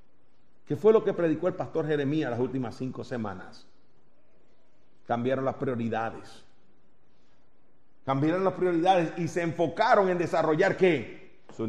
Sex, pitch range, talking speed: male, 140-190 Hz, 130 wpm